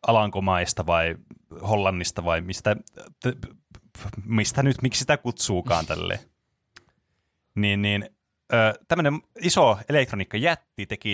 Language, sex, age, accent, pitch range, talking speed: Finnish, male, 30-49, native, 95-125 Hz, 90 wpm